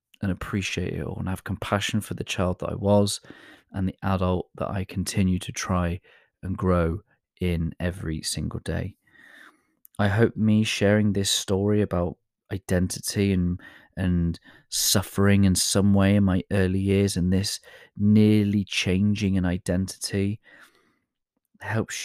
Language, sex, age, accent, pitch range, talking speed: English, male, 30-49, British, 90-100 Hz, 140 wpm